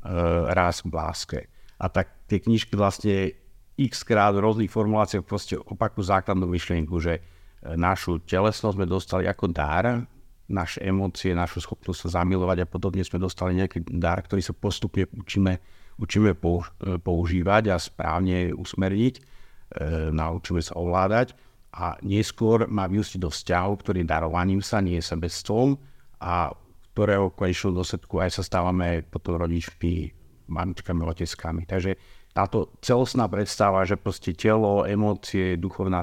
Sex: male